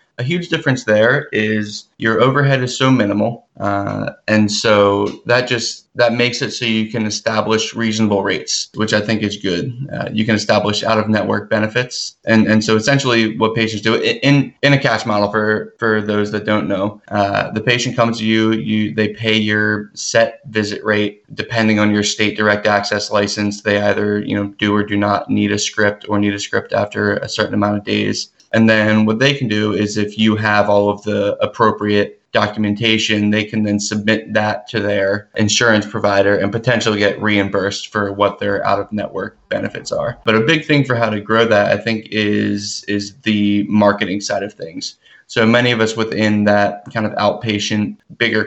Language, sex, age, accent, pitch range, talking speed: English, male, 20-39, American, 105-115 Hz, 195 wpm